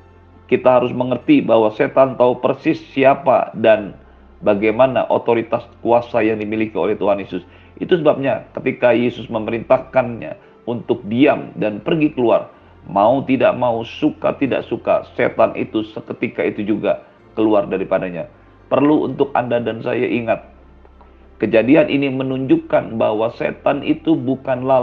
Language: Indonesian